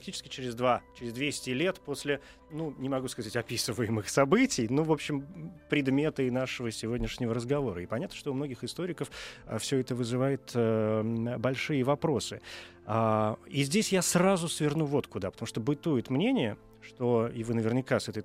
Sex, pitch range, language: male, 110-145 Hz, Russian